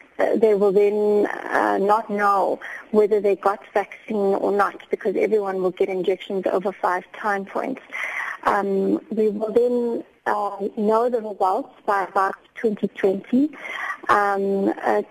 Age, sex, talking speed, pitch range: 30-49, female, 140 wpm, 195-225 Hz